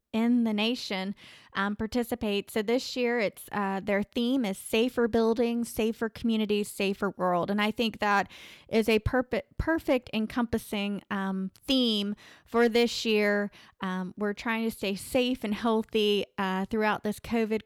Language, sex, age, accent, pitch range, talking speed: English, female, 20-39, American, 200-235 Hz, 155 wpm